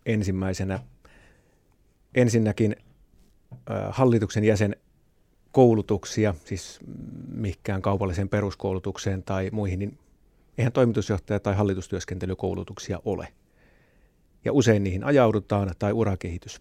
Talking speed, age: 85 wpm, 30-49